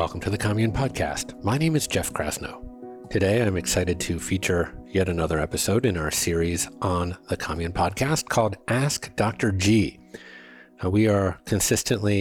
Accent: American